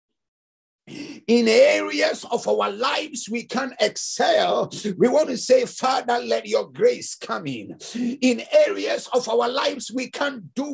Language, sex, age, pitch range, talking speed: English, male, 50-69, 230-290 Hz, 150 wpm